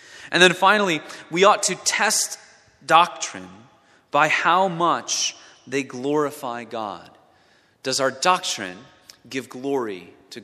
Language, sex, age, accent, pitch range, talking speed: English, male, 30-49, American, 105-135 Hz, 115 wpm